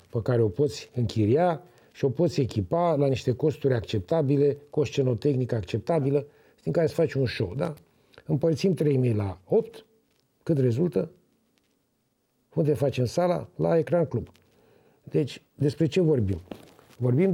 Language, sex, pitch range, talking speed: Romanian, male, 120-170 Hz, 145 wpm